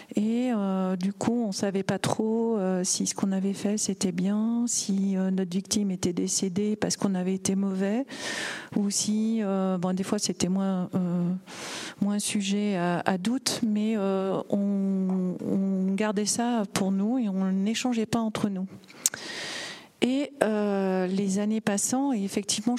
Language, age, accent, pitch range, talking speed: French, 40-59, French, 195-225 Hz, 165 wpm